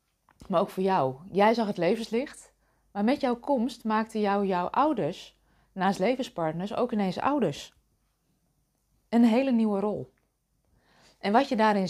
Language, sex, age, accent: Dutch, female, 20-39, Dutch